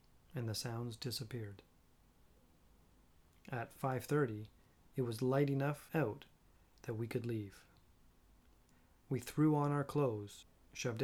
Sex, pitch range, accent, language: male, 100-135 Hz, American, English